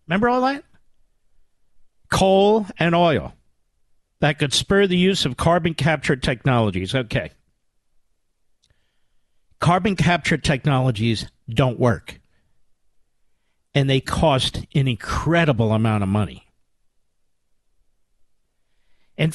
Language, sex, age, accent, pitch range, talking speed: English, male, 50-69, American, 120-180 Hz, 95 wpm